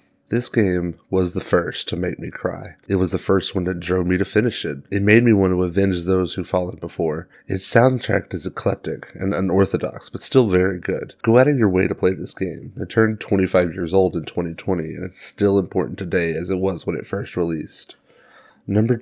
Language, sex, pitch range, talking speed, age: English, male, 90-105 Hz, 220 wpm, 30-49